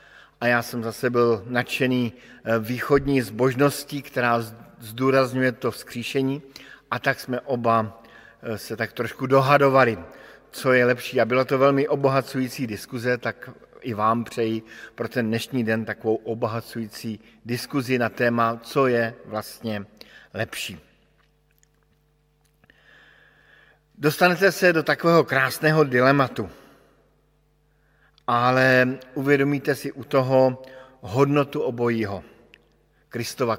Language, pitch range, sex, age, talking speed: Slovak, 120-140 Hz, male, 50-69, 105 wpm